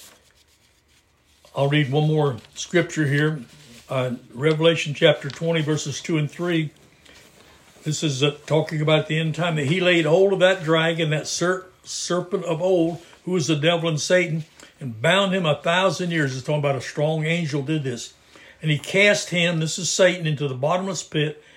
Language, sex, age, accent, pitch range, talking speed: English, male, 60-79, American, 140-170 Hz, 180 wpm